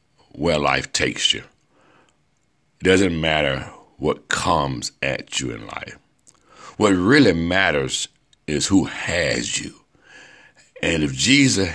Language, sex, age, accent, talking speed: English, male, 60-79, American, 115 wpm